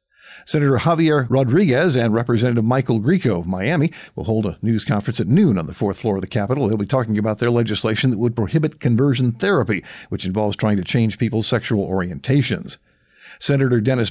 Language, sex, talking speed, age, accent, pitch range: English, male, 185 wpm, 50-69, American, 110-150 Hz